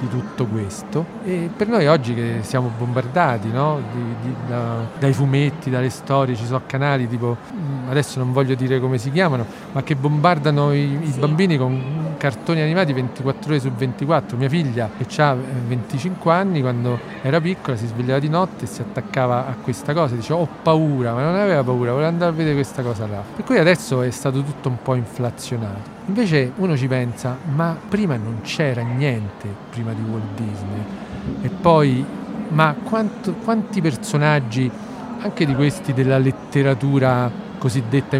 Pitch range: 125-160 Hz